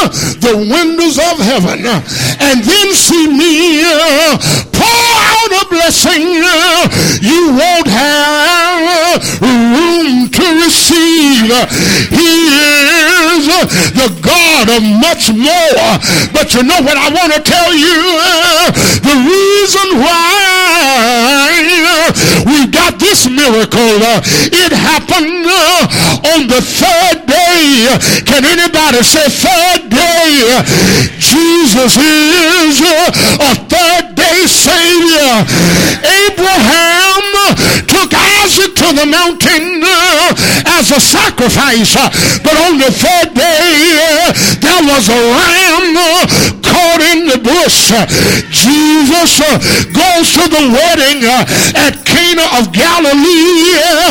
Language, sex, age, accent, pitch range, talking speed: English, male, 50-69, American, 250-345 Hz, 95 wpm